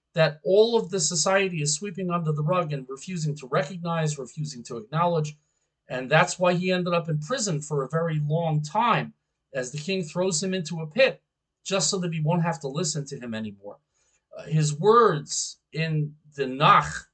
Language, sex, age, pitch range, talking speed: English, male, 40-59, 145-190 Hz, 195 wpm